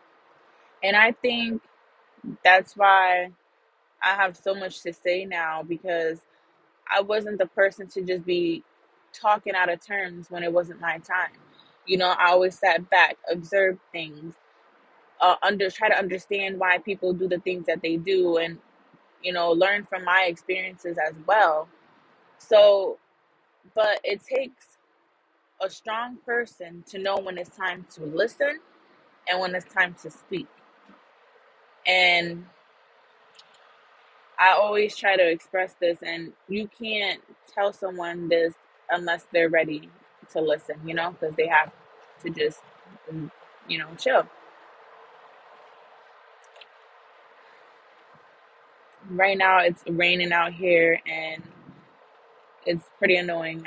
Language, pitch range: English, 170-200 Hz